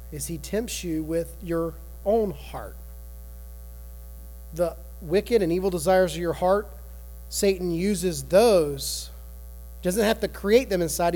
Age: 30-49